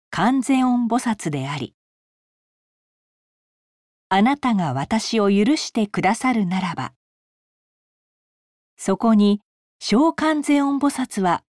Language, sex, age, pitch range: Japanese, female, 40-59, 170-255 Hz